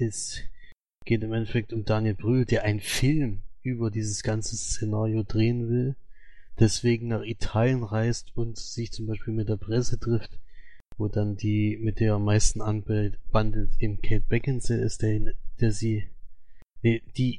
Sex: male